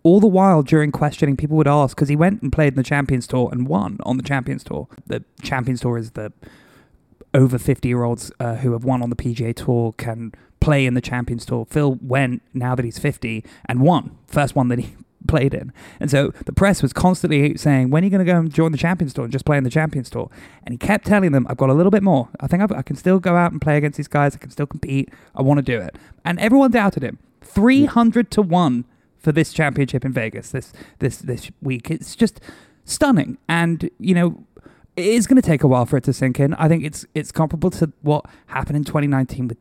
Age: 20-39